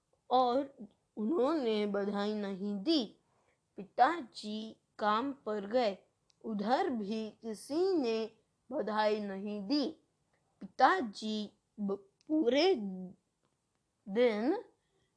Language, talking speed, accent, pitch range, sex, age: Hindi, 75 wpm, native, 205-265 Hz, female, 20-39